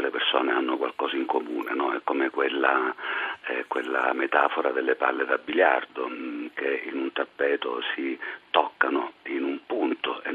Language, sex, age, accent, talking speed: Italian, male, 50-69, native, 160 wpm